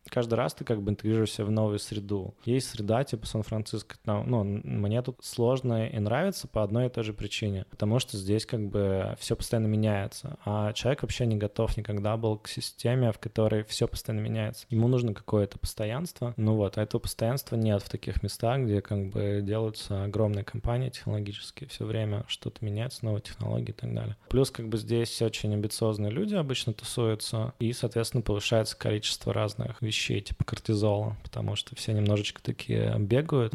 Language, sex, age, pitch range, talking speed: Russian, male, 20-39, 105-120 Hz, 180 wpm